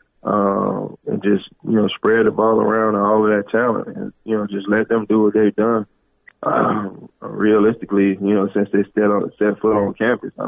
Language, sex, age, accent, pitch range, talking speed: English, male, 20-39, American, 100-110 Hz, 220 wpm